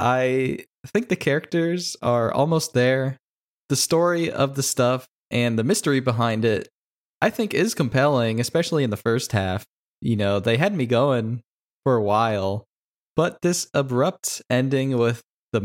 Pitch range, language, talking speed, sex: 115-145 Hz, English, 155 wpm, male